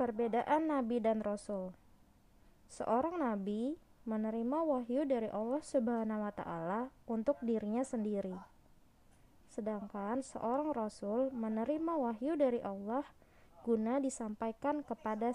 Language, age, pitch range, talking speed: Malay, 20-39, 210-265 Hz, 100 wpm